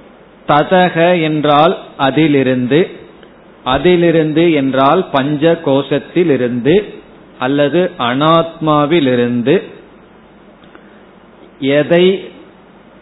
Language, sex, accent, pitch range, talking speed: Tamil, male, native, 130-160 Hz, 45 wpm